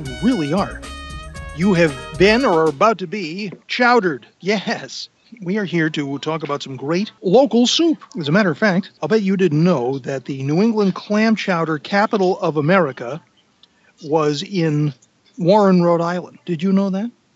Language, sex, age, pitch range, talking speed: English, male, 50-69, 155-215 Hz, 175 wpm